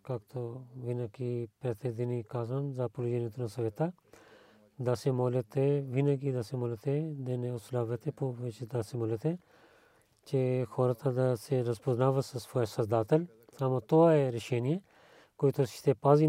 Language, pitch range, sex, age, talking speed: Bulgarian, 115-135 Hz, male, 40-59, 135 wpm